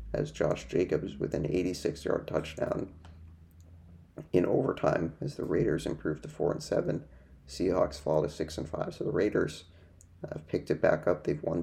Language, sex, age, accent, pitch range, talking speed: English, male, 30-49, American, 80-90 Hz, 175 wpm